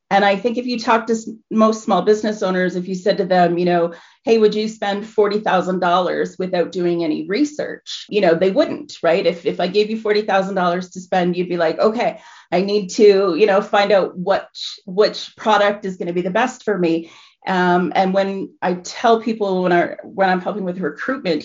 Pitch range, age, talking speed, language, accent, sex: 180-215 Hz, 30-49, 210 wpm, English, American, female